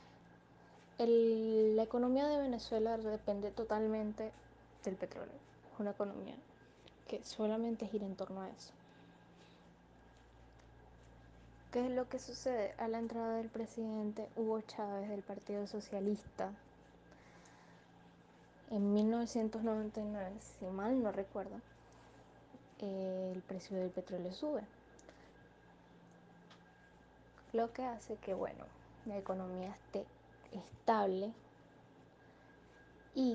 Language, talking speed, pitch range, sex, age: Spanish, 95 wpm, 190-225 Hz, female, 10-29